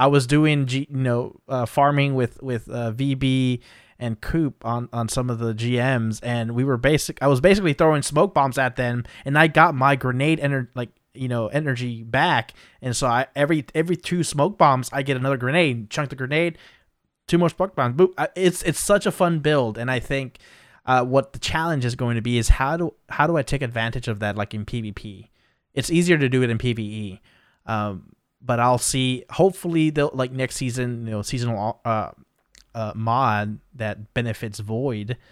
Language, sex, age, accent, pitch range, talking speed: English, male, 20-39, American, 115-140 Hz, 200 wpm